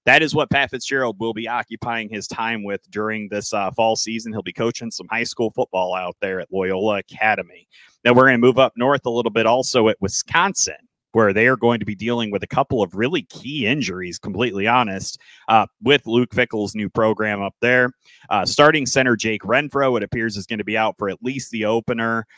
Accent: American